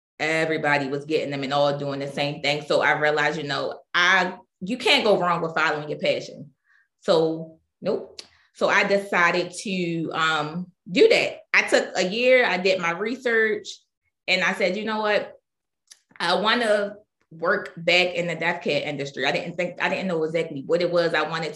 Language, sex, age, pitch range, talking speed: English, female, 20-39, 165-200 Hz, 190 wpm